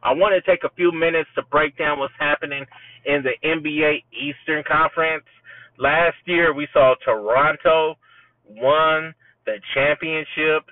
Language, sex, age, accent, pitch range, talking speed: English, male, 30-49, American, 135-165 Hz, 140 wpm